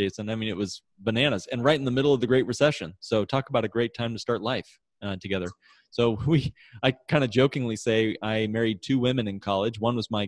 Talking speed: 245 wpm